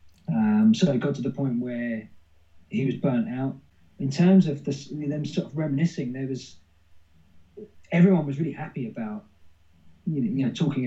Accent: British